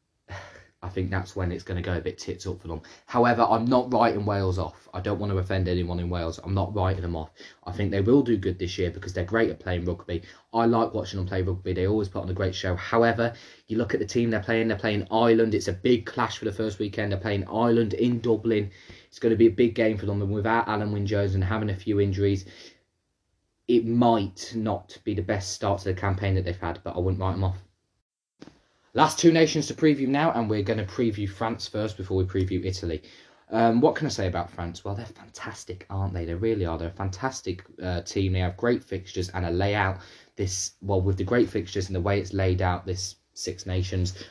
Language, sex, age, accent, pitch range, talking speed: English, male, 20-39, British, 90-110 Hz, 245 wpm